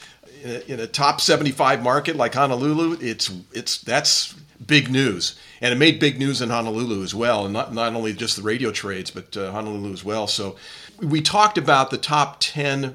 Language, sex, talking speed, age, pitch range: English, male, 200 wpm, 40-59, 110-145 Hz